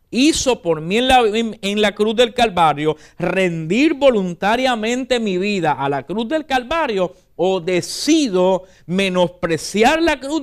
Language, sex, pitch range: English, male, 155-225 Hz